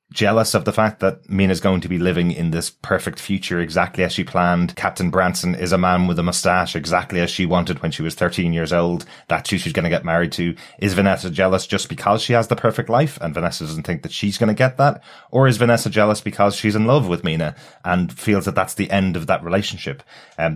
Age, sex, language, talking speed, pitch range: 30-49, male, English, 245 wpm, 85-105 Hz